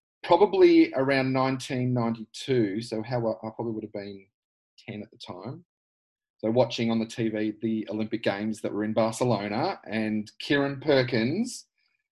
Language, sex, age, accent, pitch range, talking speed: English, male, 30-49, Australian, 115-130 Hz, 145 wpm